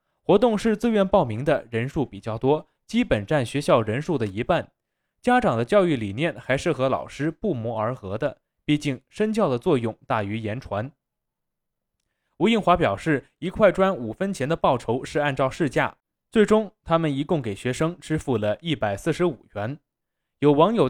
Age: 20-39